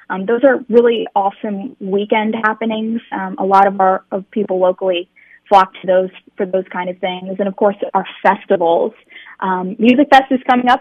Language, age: English, 20-39